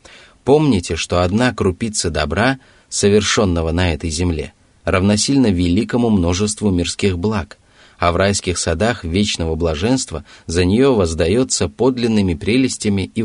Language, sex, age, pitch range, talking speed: Russian, male, 30-49, 85-105 Hz, 120 wpm